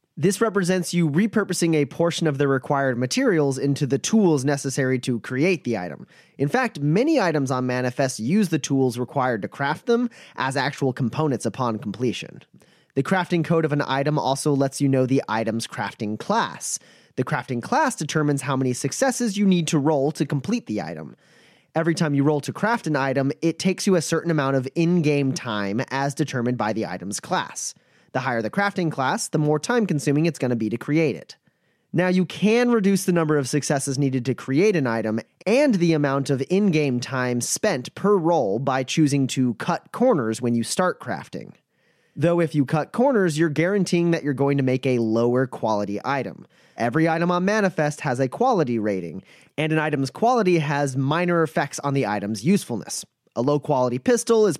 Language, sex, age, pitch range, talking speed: English, male, 30-49, 130-170 Hz, 190 wpm